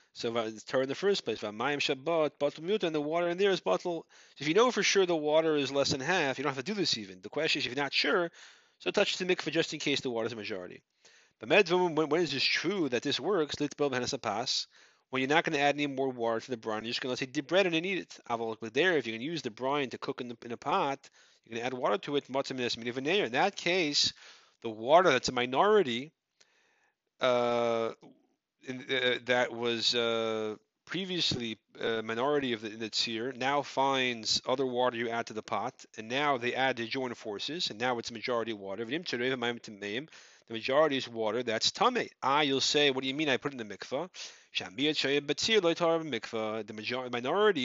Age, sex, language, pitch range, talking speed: 30-49, male, English, 120-155 Hz, 215 wpm